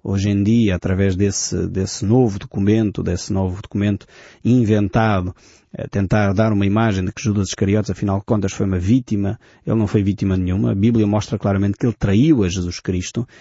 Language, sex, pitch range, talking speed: Portuguese, male, 100-130 Hz, 190 wpm